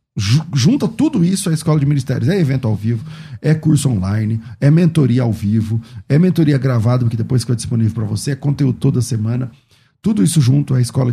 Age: 40-59